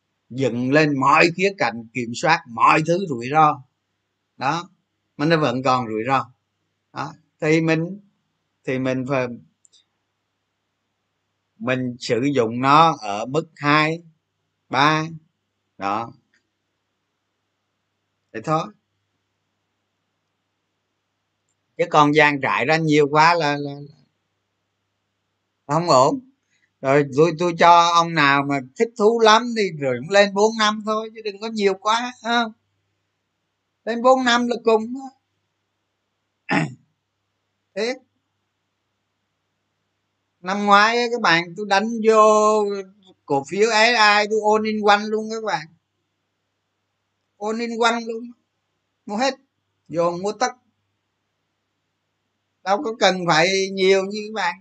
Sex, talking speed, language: male, 120 wpm, Vietnamese